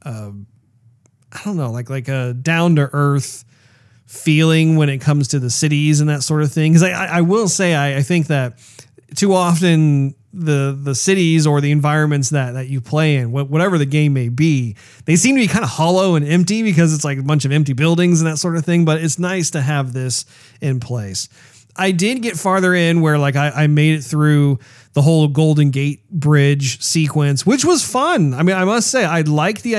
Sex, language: male, English